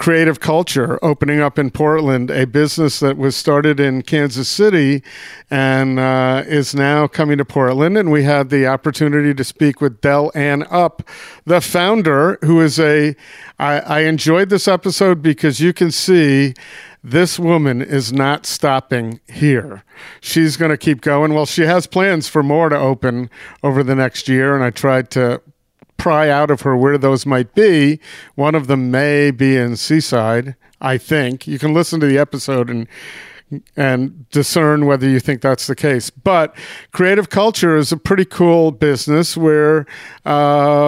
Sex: male